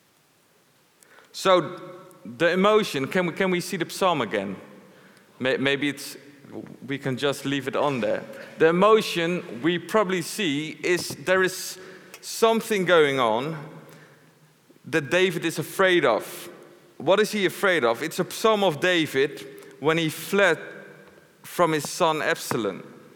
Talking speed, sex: 135 wpm, male